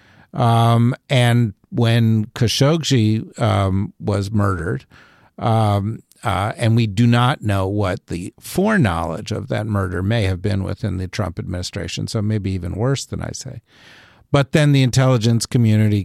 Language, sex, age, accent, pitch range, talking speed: English, male, 50-69, American, 100-135 Hz, 145 wpm